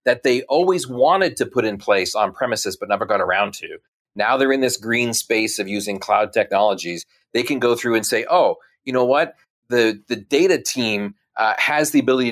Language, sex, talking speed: English, male, 205 wpm